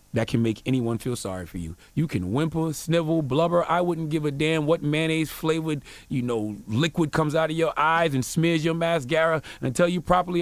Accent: American